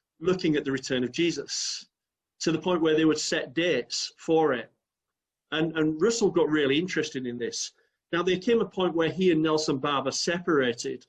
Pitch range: 135-170 Hz